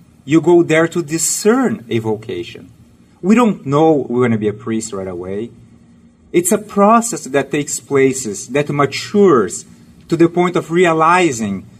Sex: male